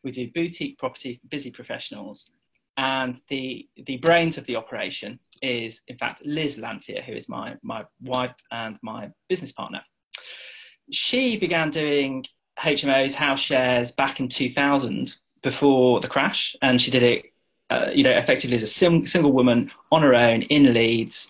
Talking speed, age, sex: 160 wpm, 20-39, male